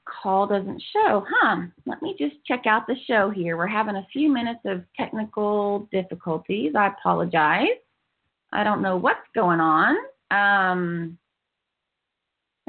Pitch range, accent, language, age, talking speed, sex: 190-235 Hz, American, English, 30-49, 135 wpm, female